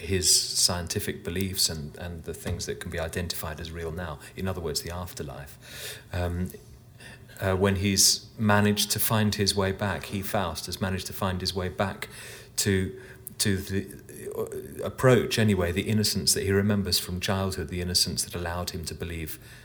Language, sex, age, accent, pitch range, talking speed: English, male, 30-49, British, 95-120 Hz, 175 wpm